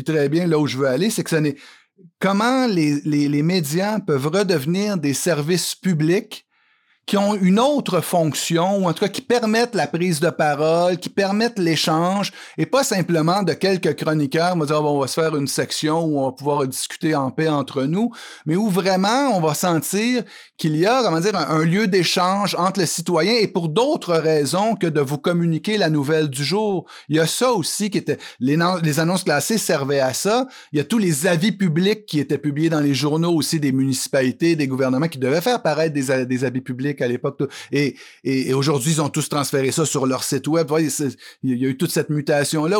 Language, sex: French, male